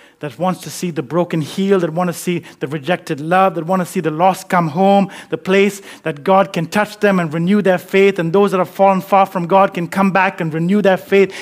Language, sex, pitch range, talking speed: English, male, 185-220 Hz, 250 wpm